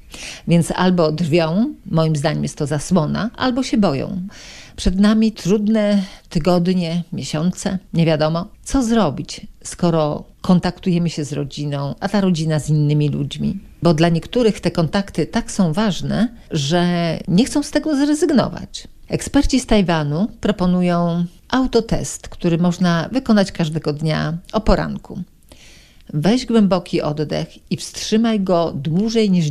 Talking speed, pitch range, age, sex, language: 130 wpm, 160-210 Hz, 50-69, female, Polish